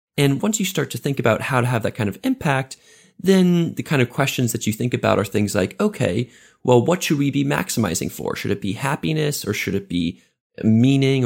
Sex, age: male, 20-39